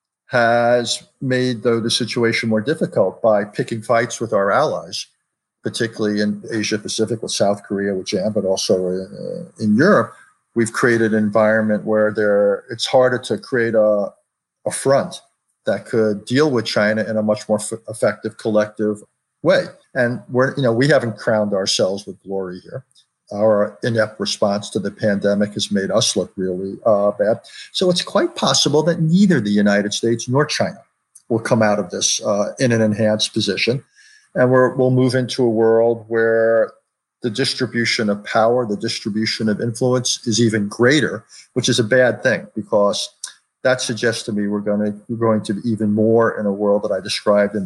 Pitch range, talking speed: 105-120 Hz, 180 wpm